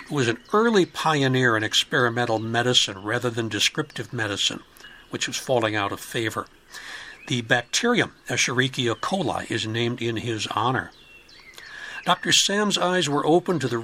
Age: 60-79